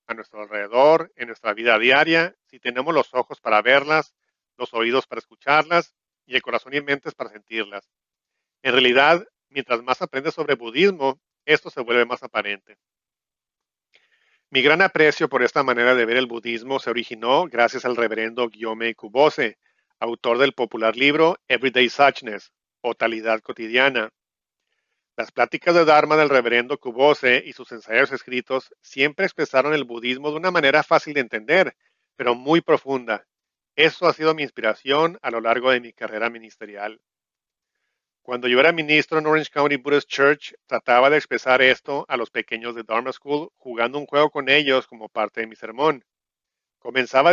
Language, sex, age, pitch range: English, male, 40-59, 115-150 Hz